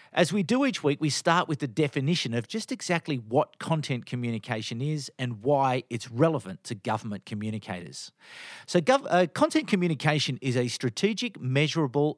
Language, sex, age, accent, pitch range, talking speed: English, male, 50-69, Australian, 125-185 Hz, 160 wpm